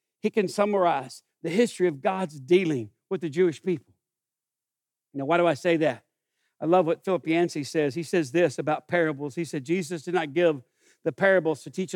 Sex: male